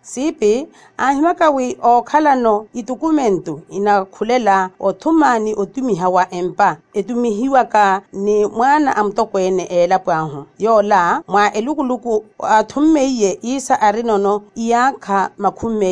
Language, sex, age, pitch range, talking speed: Portuguese, female, 40-59, 190-250 Hz, 100 wpm